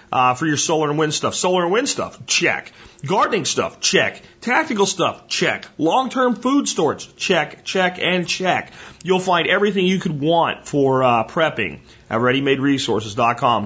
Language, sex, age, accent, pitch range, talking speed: English, male, 40-59, American, 120-160 Hz, 160 wpm